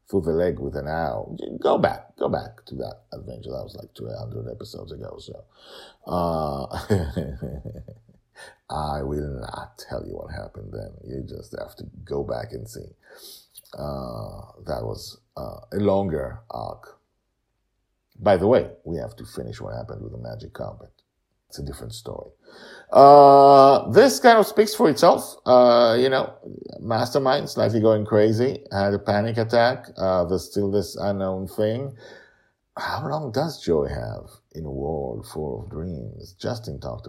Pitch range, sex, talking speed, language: 80-115 Hz, male, 155 wpm, English